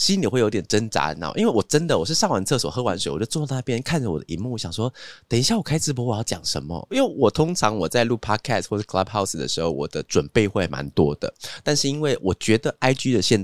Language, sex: Chinese, male